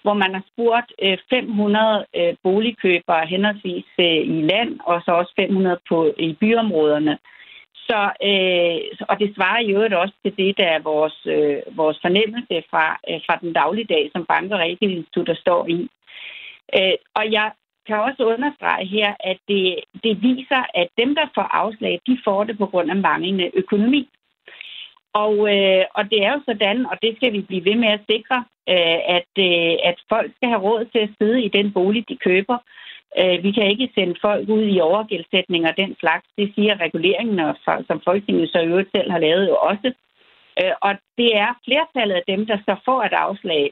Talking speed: 185 wpm